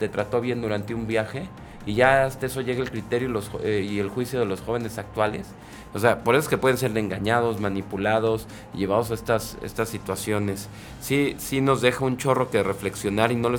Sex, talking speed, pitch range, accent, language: male, 215 wpm, 100-115 Hz, Mexican, Spanish